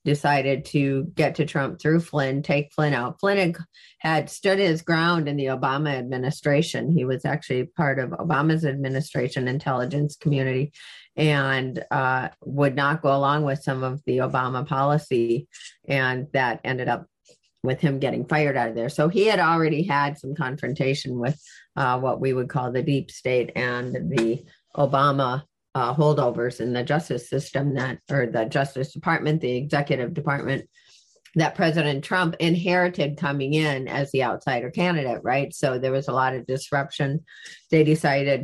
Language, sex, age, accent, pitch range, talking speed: English, female, 40-59, American, 130-155 Hz, 160 wpm